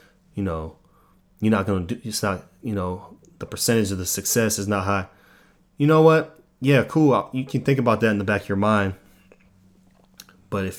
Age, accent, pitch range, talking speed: 20-39, American, 95-110 Hz, 200 wpm